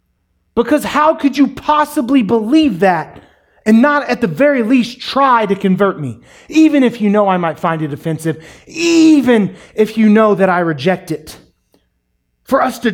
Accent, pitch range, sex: American, 155-245 Hz, male